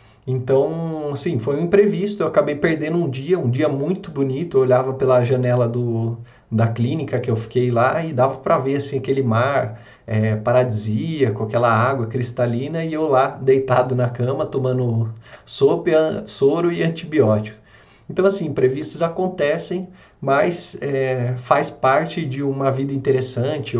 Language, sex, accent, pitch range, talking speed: Portuguese, male, Brazilian, 115-155 Hz, 155 wpm